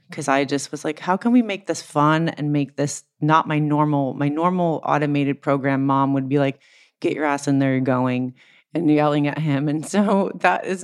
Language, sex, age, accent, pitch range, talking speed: English, female, 30-49, American, 140-165 Hz, 220 wpm